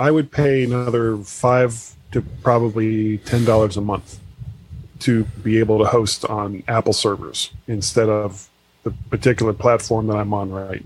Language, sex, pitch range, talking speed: English, male, 105-125 Hz, 150 wpm